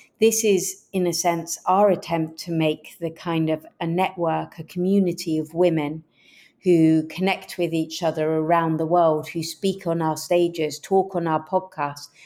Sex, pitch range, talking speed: female, 155-180 Hz, 170 wpm